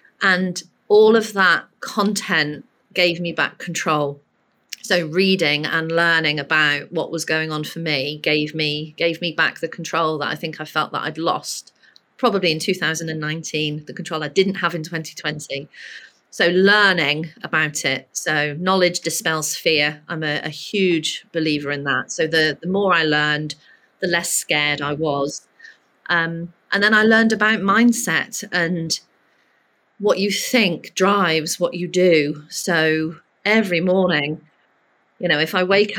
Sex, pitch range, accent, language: female, 155-185 Hz, British, English